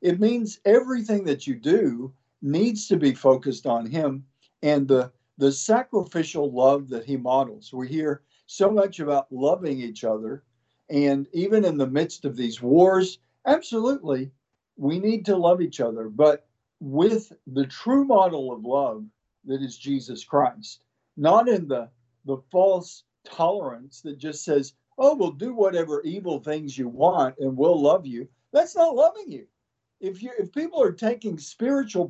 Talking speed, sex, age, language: 160 wpm, male, 50-69, English